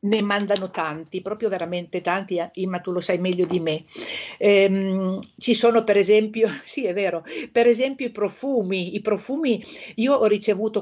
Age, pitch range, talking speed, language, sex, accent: 50-69, 180-225 Hz, 165 wpm, Italian, female, native